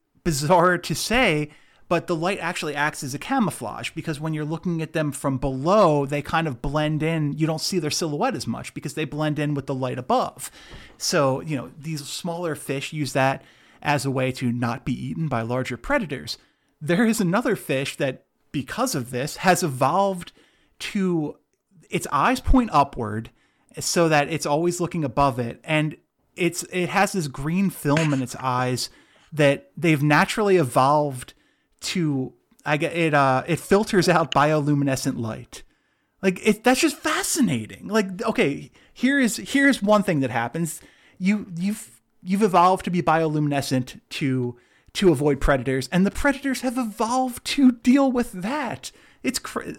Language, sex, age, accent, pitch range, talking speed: English, male, 30-49, American, 140-185 Hz, 170 wpm